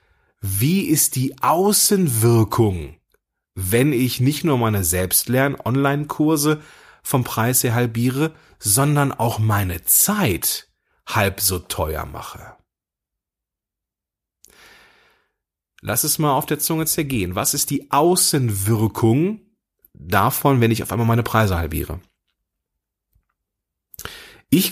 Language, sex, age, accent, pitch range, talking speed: German, male, 30-49, German, 100-145 Hz, 100 wpm